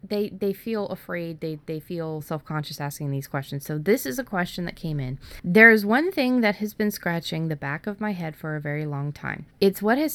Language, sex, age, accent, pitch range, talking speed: English, female, 20-39, American, 145-200 Hz, 235 wpm